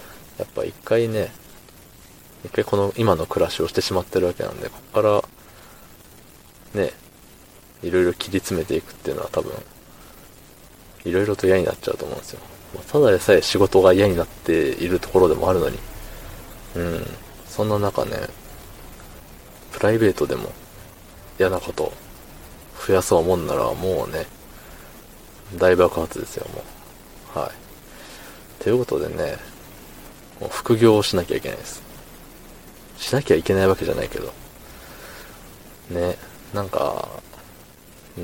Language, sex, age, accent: Japanese, male, 20-39, native